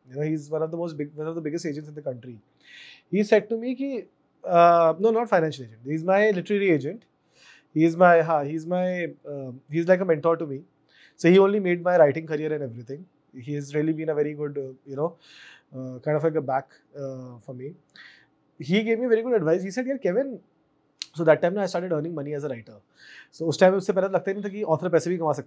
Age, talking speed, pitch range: 30-49, 220 wpm, 150-195 Hz